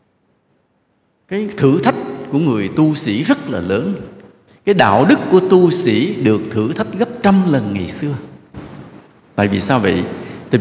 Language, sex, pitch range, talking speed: English, male, 105-145 Hz, 165 wpm